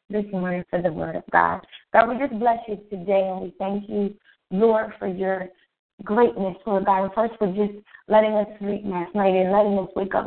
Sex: female